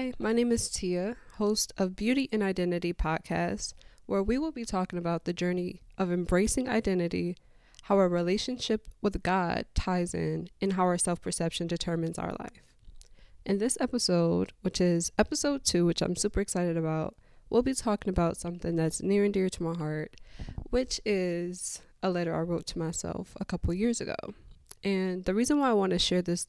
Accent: American